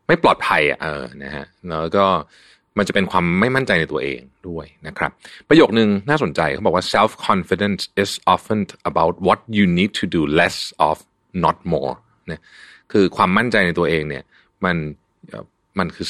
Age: 30-49